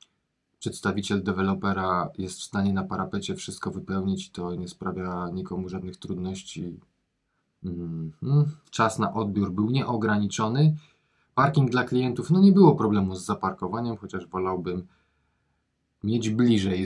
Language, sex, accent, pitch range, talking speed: Polish, male, native, 95-130 Hz, 120 wpm